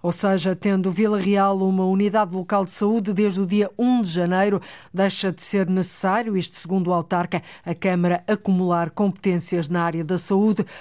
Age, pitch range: 50-69, 180-210 Hz